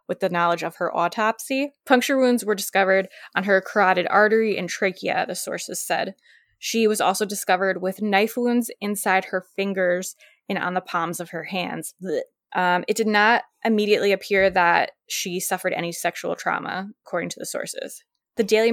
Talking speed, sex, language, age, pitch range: 175 wpm, female, English, 20-39, 180-210 Hz